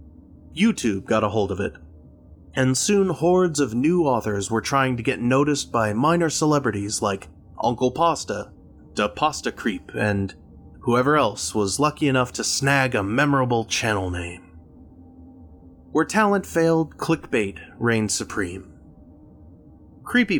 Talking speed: 130 wpm